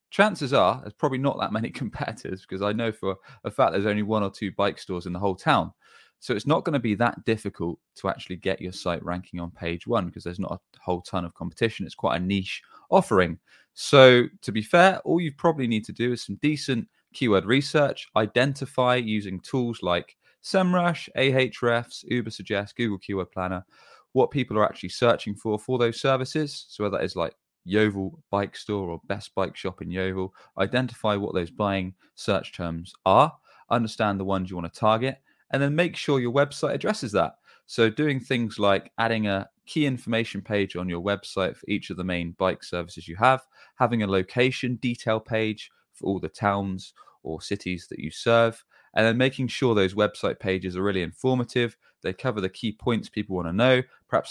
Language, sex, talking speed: English, male, 200 wpm